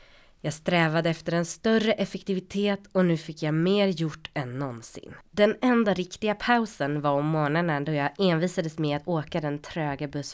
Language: Swedish